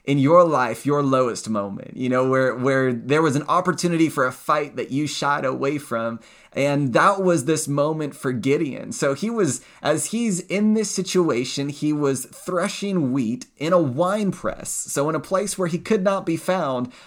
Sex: male